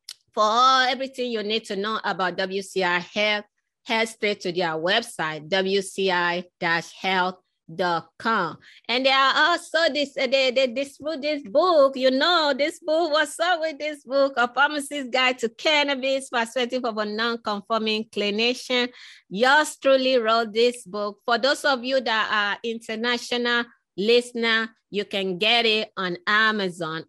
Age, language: 20-39, English